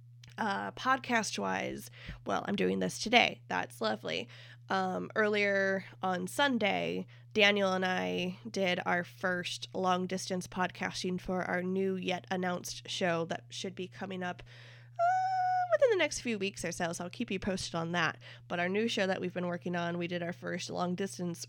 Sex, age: female, 20-39